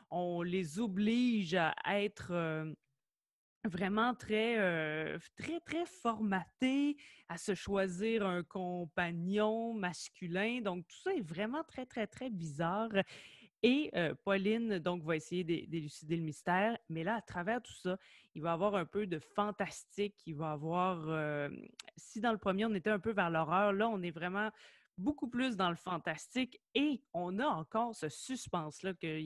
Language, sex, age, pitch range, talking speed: French, female, 20-39, 170-230 Hz, 165 wpm